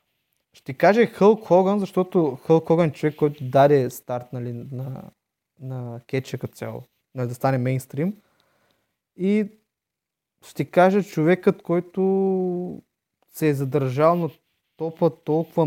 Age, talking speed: 20-39, 110 wpm